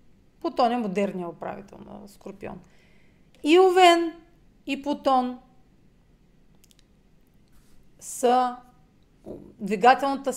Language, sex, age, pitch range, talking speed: Bulgarian, female, 40-59, 200-255 Hz, 70 wpm